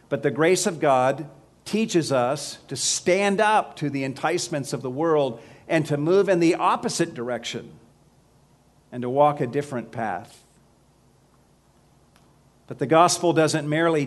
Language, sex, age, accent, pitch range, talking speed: English, male, 50-69, American, 125-155 Hz, 145 wpm